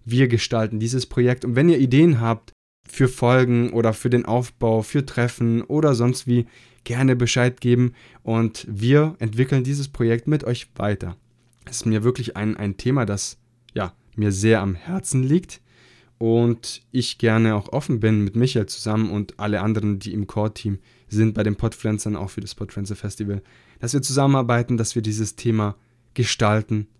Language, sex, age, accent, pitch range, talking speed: German, male, 10-29, German, 110-125 Hz, 170 wpm